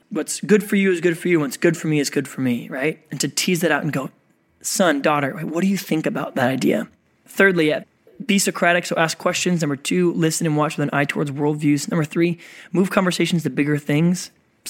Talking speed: 235 wpm